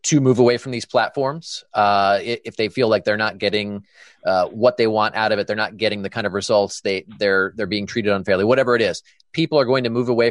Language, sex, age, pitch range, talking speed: English, male, 30-49, 100-120 Hz, 250 wpm